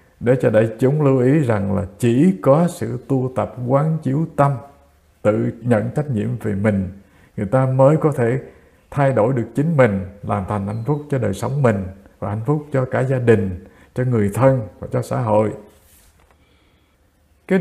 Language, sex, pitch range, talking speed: English, male, 100-140 Hz, 185 wpm